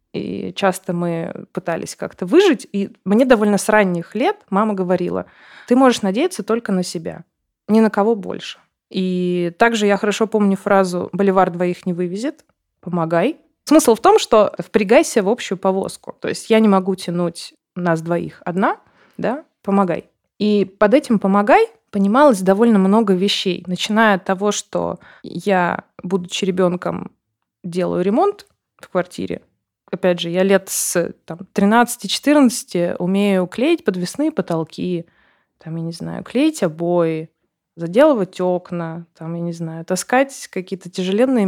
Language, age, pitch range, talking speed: Russian, 20-39, 180-220 Hz, 140 wpm